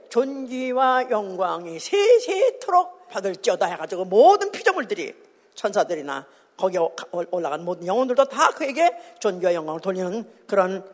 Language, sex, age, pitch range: Korean, female, 50-69, 235-390 Hz